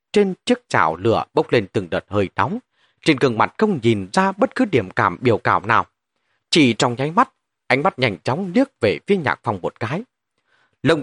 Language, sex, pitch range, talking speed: Vietnamese, male, 120-195 Hz, 210 wpm